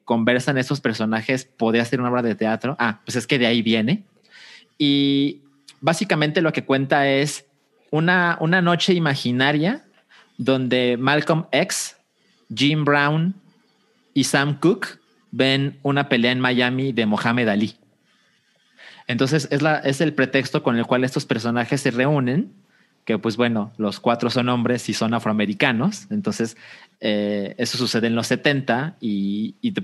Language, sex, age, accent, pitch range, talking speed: Spanish, male, 30-49, Mexican, 115-140 Hz, 150 wpm